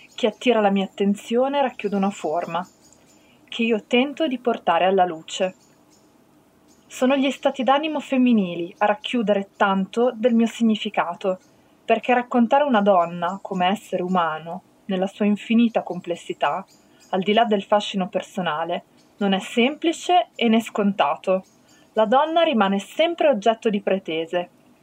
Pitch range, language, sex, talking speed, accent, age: 195-260 Hz, Italian, female, 135 wpm, native, 20-39